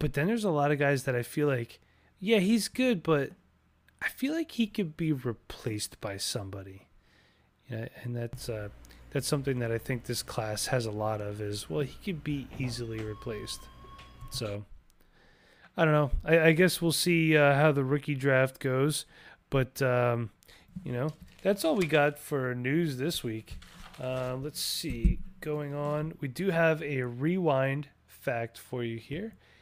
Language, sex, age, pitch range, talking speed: English, male, 30-49, 115-155 Hz, 175 wpm